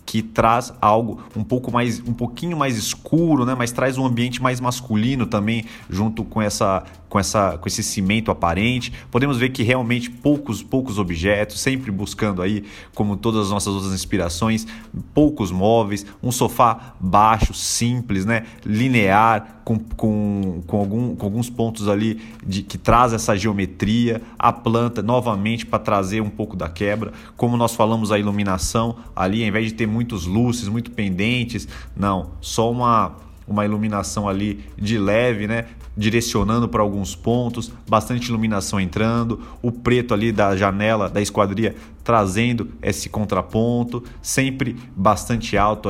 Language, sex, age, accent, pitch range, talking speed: Portuguese, male, 30-49, Brazilian, 100-115 Hz, 150 wpm